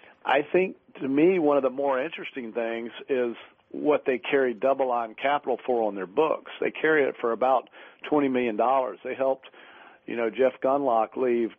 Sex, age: male, 50-69